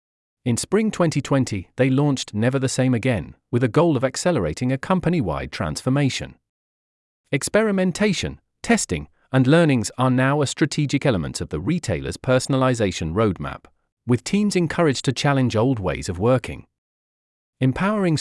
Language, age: English, 40-59